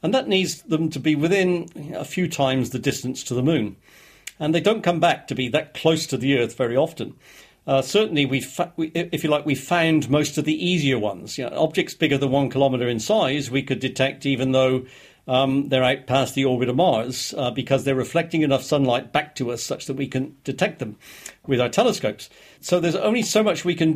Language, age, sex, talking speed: English, 50-69, male, 235 wpm